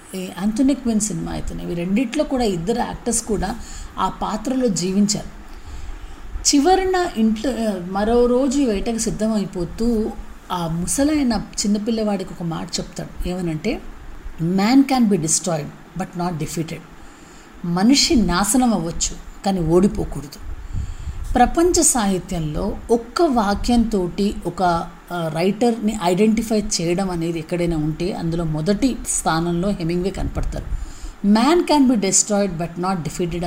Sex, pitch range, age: female, 180-235 Hz, 30-49